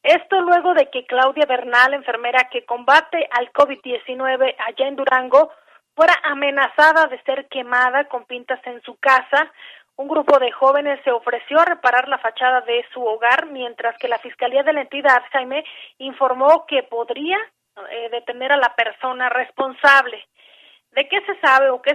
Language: Spanish